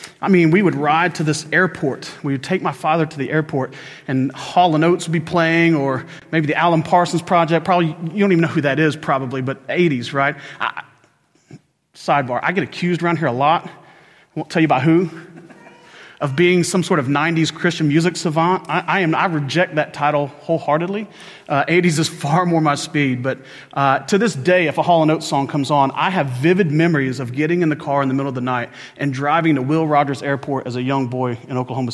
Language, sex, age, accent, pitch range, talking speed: English, male, 40-59, American, 135-175 Hz, 225 wpm